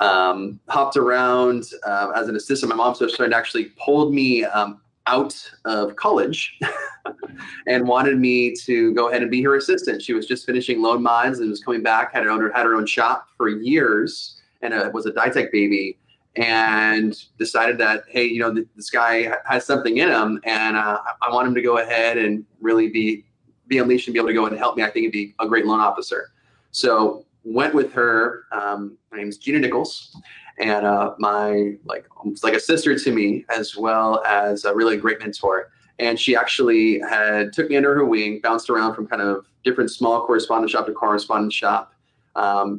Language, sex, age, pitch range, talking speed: English, male, 30-49, 105-125 Hz, 200 wpm